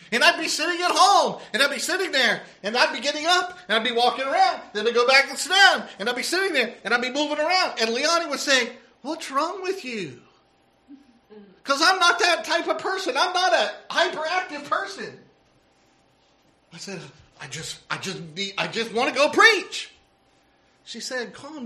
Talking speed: 200 wpm